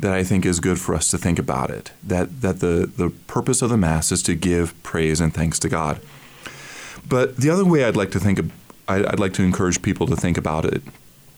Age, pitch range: 30-49, 90-120 Hz